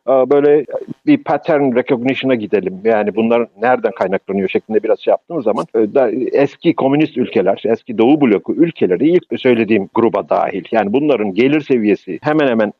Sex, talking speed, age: male, 150 wpm, 50-69